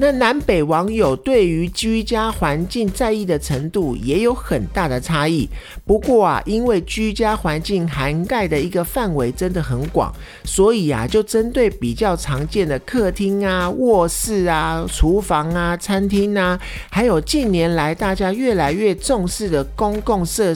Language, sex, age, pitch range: Chinese, male, 50-69, 150-210 Hz